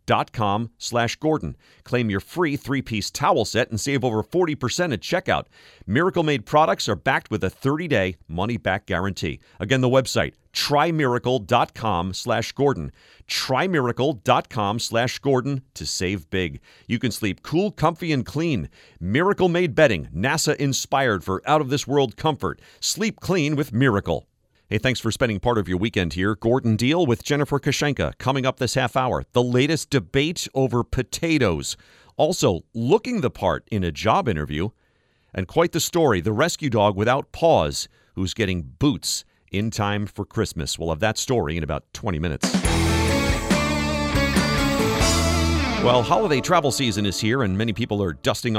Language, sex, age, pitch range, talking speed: English, male, 40-59, 100-140 Hz, 145 wpm